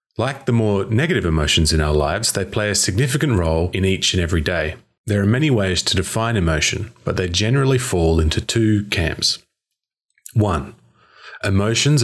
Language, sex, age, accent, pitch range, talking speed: English, male, 30-49, Australian, 85-115 Hz, 170 wpm